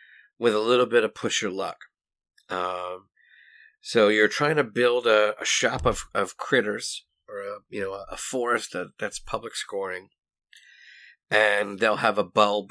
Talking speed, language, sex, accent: 165 wpm, English, male, American